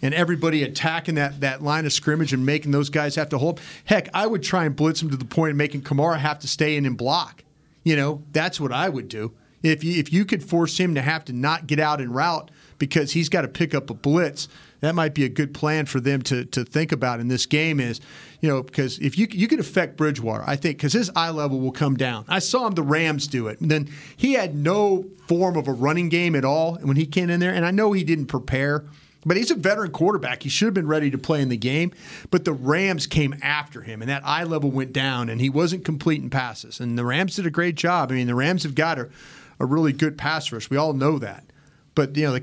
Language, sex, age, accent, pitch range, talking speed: English, male, 40-59, American, 135-165 Hz, 265 wpm